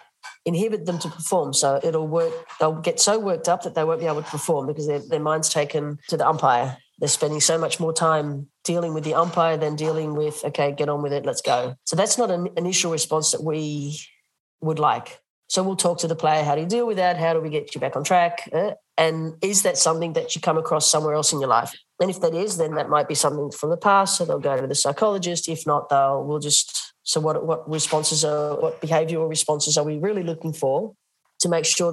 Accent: Australian